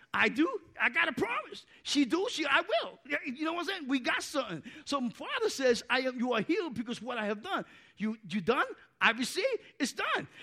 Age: 50-69